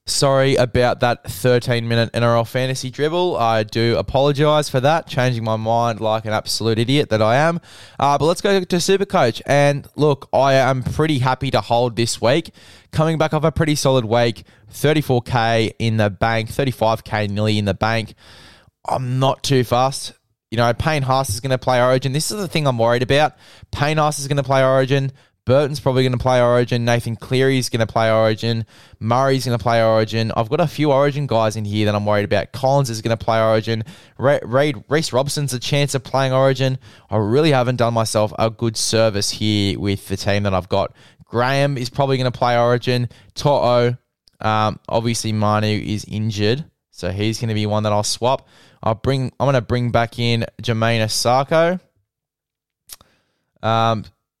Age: 10-29